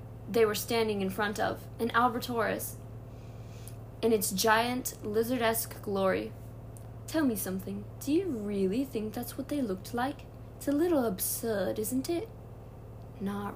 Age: 20-39